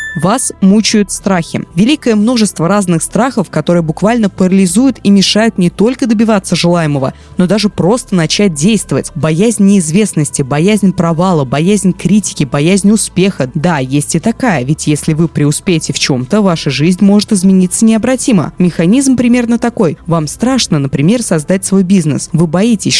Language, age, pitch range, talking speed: Russian, 20-39, 170-220 Hz, 145 wpm